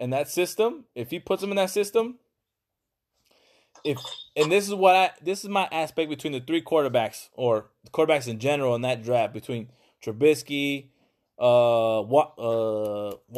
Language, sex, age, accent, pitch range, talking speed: English, male, 20-39, American, 125-170 Hz, 160 wpm